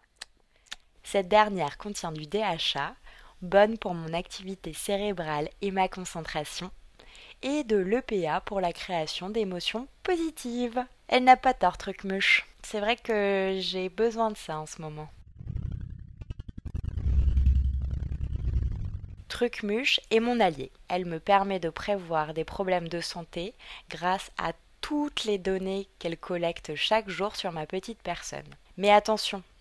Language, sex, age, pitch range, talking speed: French, female, 20-39, 160-210 Hz, 130 wpm